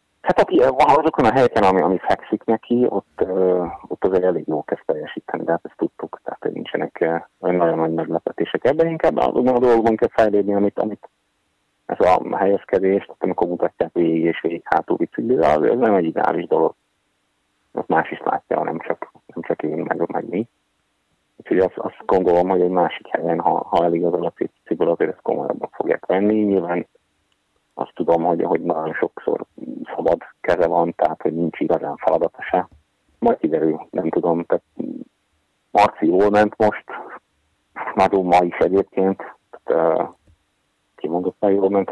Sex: male